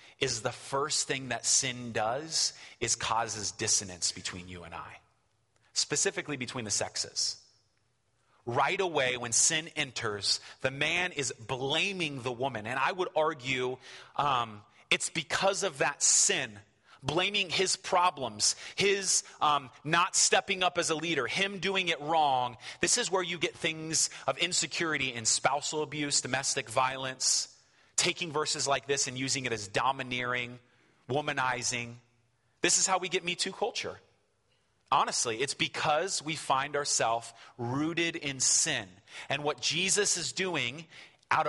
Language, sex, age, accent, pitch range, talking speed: English, male, 30-49, American, 120-160 Hz, 145 wpm